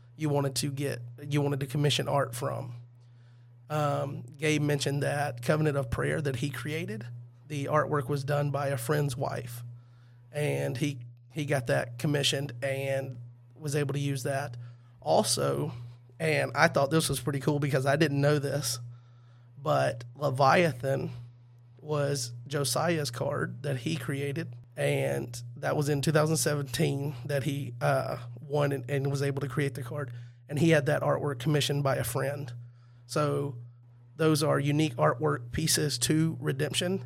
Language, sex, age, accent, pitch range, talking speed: English, male, 30-49, American, 120-150 Hz, 150 wpm